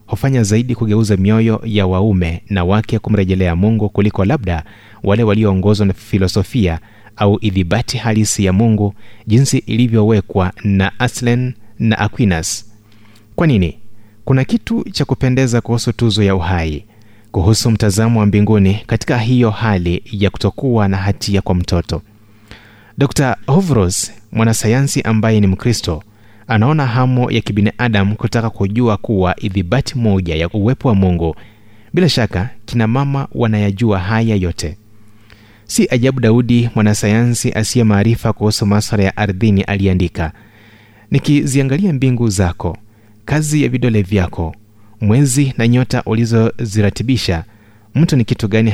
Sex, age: male, 30-49